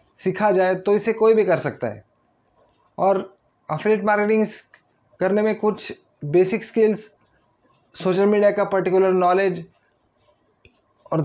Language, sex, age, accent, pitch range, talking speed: Hindi, male, 20-39, native, 175-210 Hz, 125 wpm